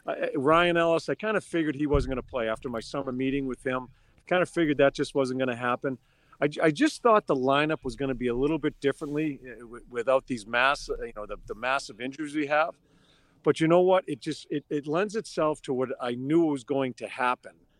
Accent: American